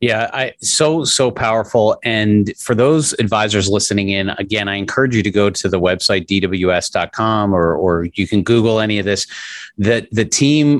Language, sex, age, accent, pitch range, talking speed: English, male, 40-59, American, 95-115 Hz, 180 wpm